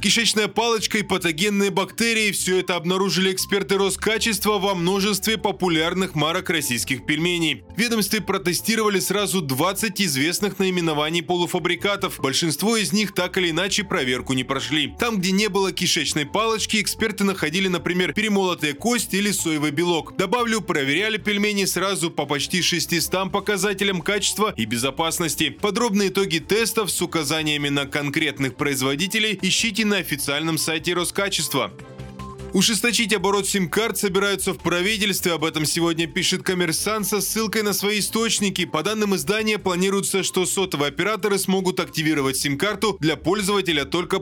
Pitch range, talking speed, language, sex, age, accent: 160-205 Hz, 135 wpm, Russian, male, 20-39, native